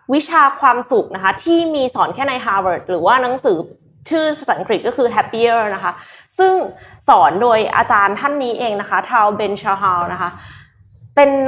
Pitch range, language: 200-300 Hz, Thai